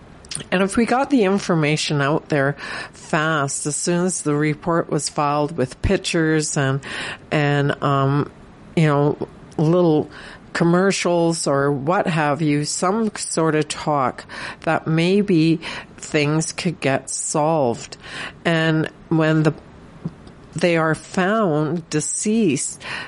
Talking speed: 120 wpm